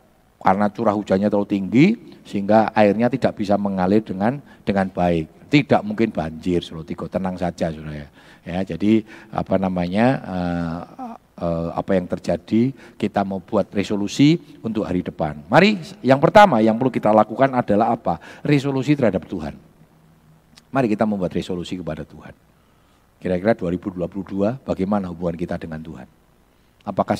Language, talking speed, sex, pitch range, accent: Indonesian, 135 wpm, male, 90-120 Hz, native